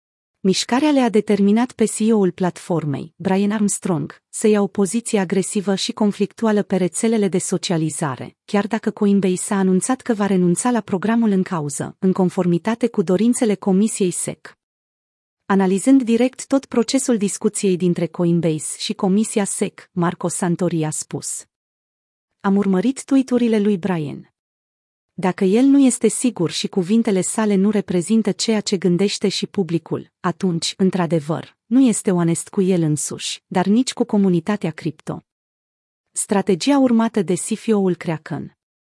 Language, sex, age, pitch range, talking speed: Romanian, female, 30-49, 175-220 Hz, 135 wpm